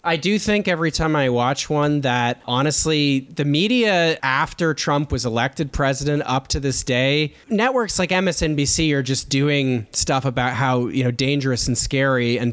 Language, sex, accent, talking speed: English, male, American, 170 wpm